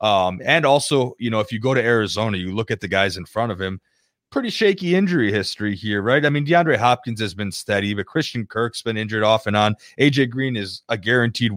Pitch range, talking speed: 110-140 Hz, 235 wpm